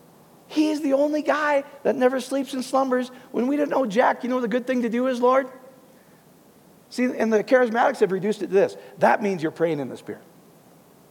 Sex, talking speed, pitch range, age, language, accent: male, 210 wpm, 200-255 Hz, 40-59, English, American